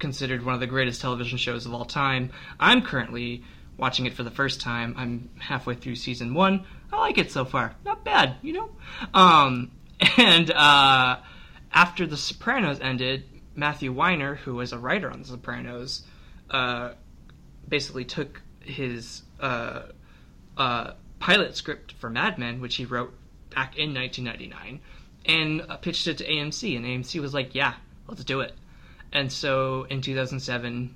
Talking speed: 160 wpm